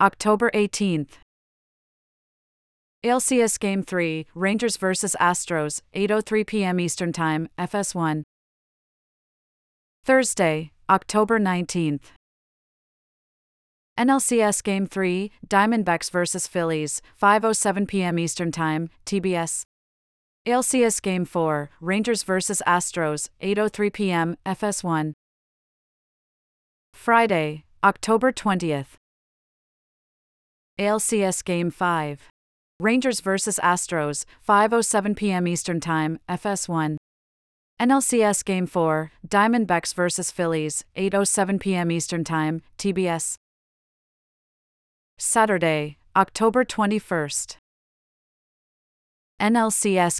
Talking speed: 80 wpm